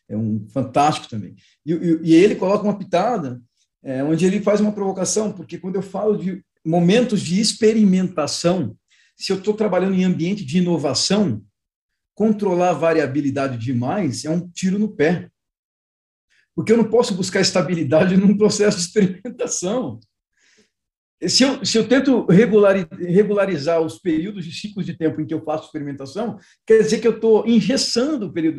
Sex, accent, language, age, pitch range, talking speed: male, Brazilian, Portuguese, 50-69, 150-205 Hz, 155 wpm